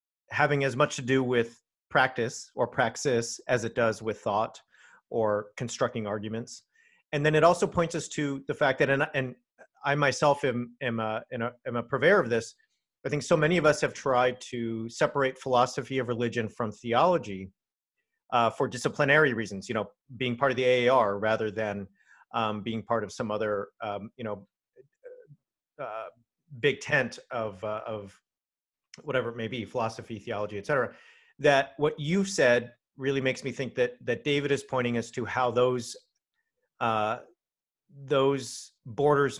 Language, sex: English, male